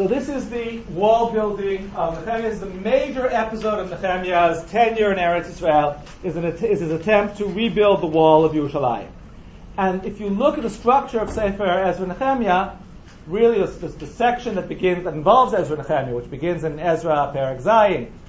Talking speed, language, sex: 185 wpm, English, male